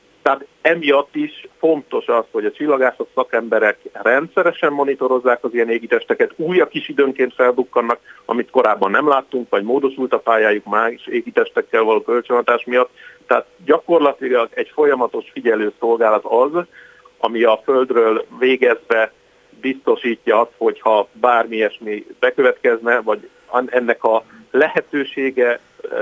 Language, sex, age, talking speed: Hungarian, male, 50-69, 120 wpm